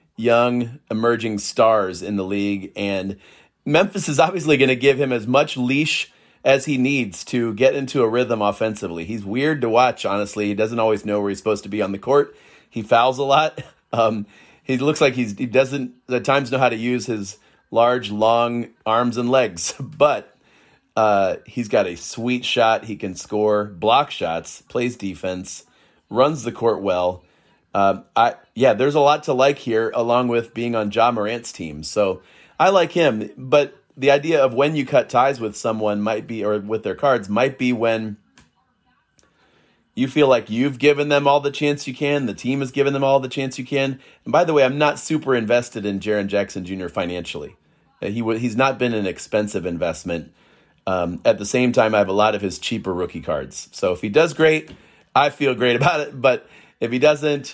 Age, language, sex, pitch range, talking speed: 30-49, English, male, 105-135 Hz, 200 wpm